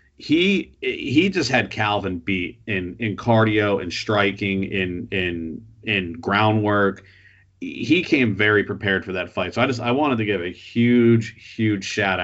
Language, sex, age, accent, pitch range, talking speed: English, male, 40-59, American, 95-115 Hz, 160 wpm